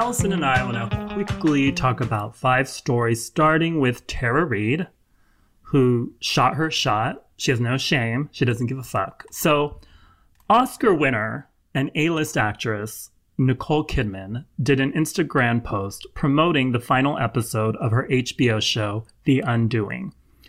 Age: 30-49